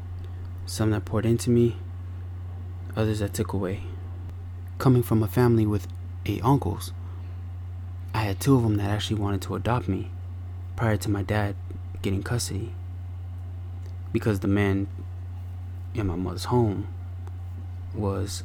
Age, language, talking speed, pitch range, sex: 20-39, English, 135 wpm, 90-105 Hz, male